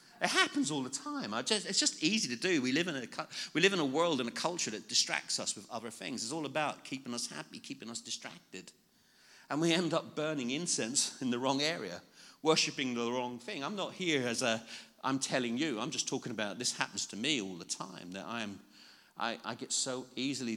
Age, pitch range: 40-59, 115-155 Hz